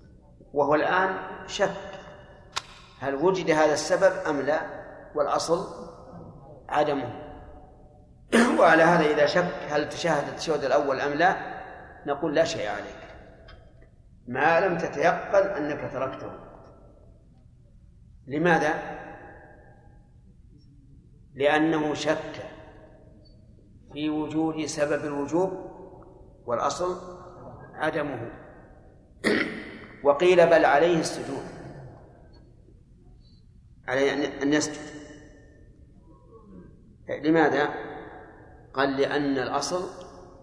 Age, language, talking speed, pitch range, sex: 50-69, Arabic, 75 wpm, 135-165 Hz, male